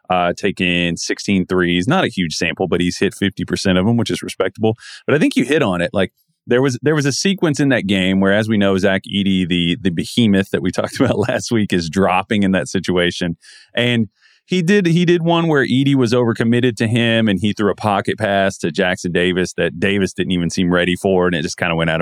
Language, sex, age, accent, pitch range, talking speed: English, male, 30-49, American, 90-115 Hz, 245 wpm